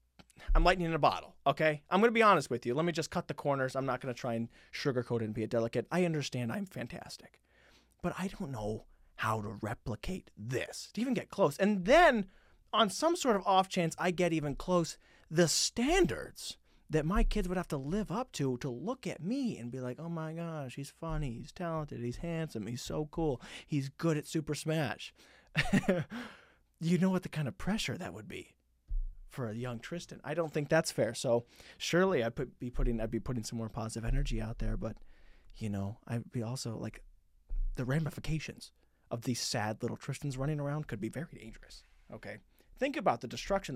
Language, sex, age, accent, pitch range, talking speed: English, male, 30-49, American, 115-175 Hz, 210 wpm